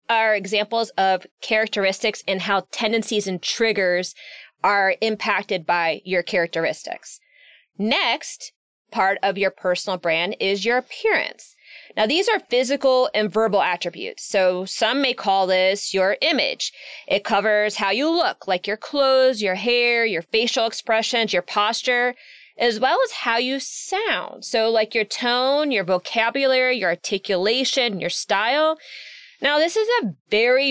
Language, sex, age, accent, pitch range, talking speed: English, female, 20-39, American, 205-280 Hz, 145 wpm